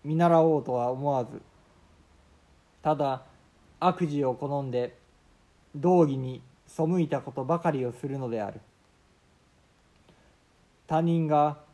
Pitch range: 120-155 Hz